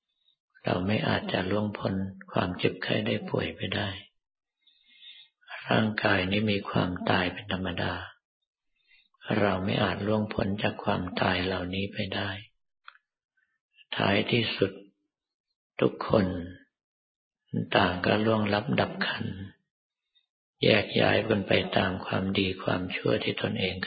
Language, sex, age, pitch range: Thai, male, 50-69, 95-110 Hz